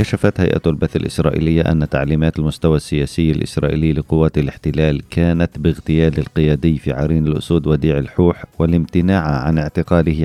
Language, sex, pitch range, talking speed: Arabic, male, 75-85 Hz, 130 wpm